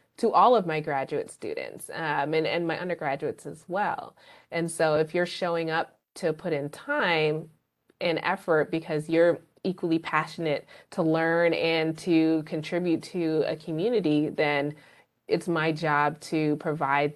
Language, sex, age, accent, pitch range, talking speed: English, female, 20-39, American, 150-170 Hz, 150 wpm